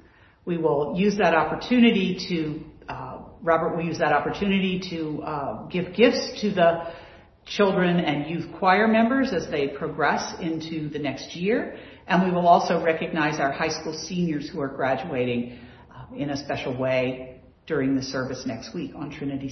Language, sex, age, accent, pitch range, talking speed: English, female, 50-69, American, 150-210 Hz, 165 wpm